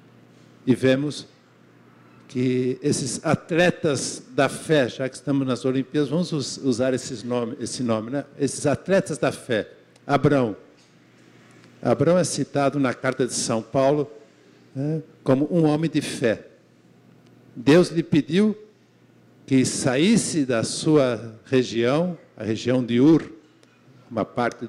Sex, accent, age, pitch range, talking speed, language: male, Brazilian, 60-79, 120-160 Hz, 125 wpm, English